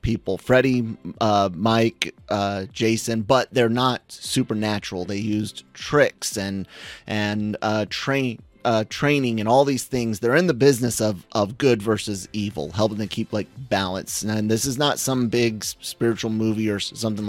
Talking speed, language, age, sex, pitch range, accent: 165 wpm, English, 30-49, male, 105-120 Hz, American